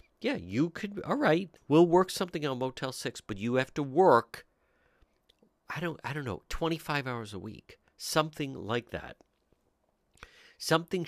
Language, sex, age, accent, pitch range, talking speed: English, male, 50-69, American, 95-140 Hz, 160 wpm